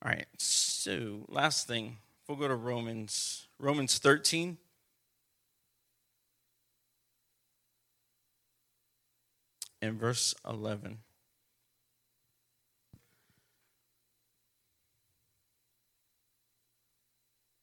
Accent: American